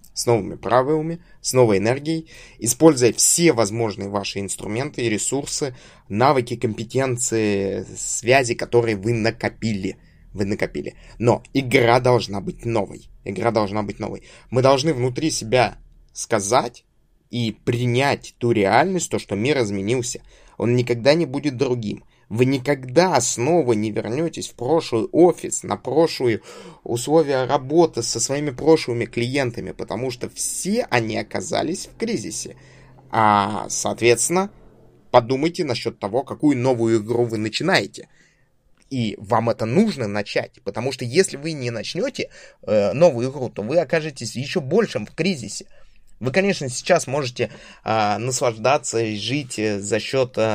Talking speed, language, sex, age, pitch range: 135 wpm, Russian, male, 20-39, 110-145 Hz